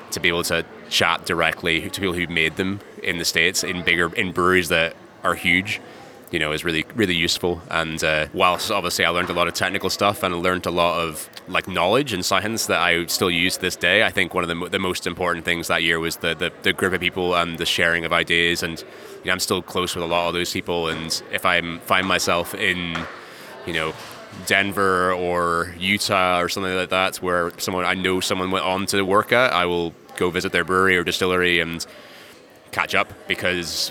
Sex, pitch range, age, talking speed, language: male, 85-95 Hz, 20-39, 225 wpm, English